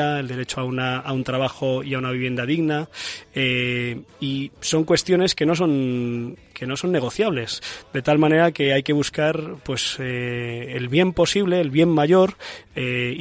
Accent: Spanish